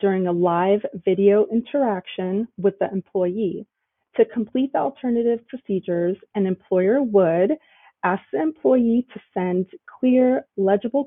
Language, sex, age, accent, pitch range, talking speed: English, female, 30-49, American, 185-245 Hz, 125 wpm